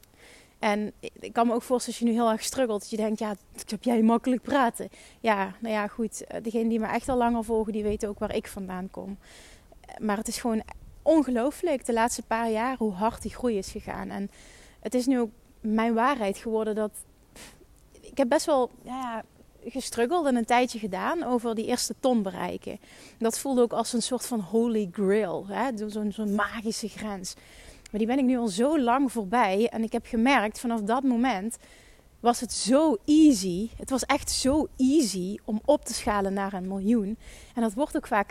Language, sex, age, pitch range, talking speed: Dutch, female, 30-49, 215-250 Hz, 205 wpm